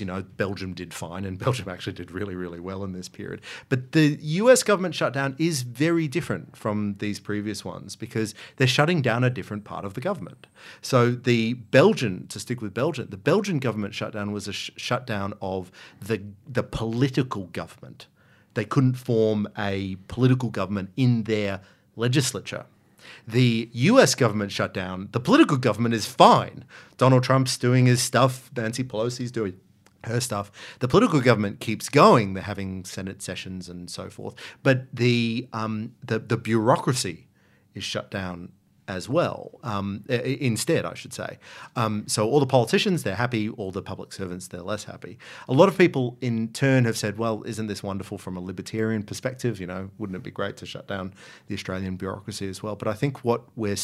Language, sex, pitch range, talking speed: English, male, 100-125 Hz, 180 wpm